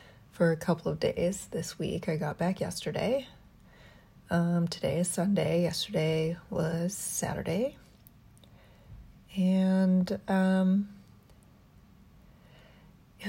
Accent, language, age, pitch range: American, English, 30-49, 165-190 Hz